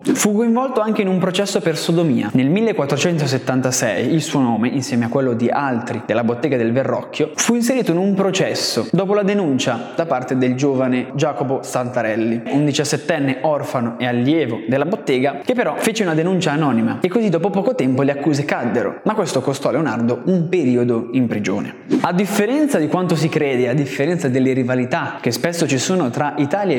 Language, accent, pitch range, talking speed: Italian, native, 130-190 Hz, 185 wpm